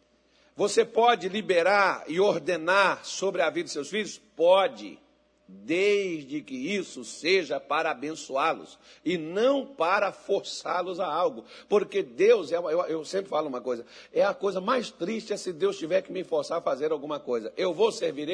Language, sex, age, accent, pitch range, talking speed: Portuguese, male, 60-79, Brazilian, 190-285 Hz, 170 wpm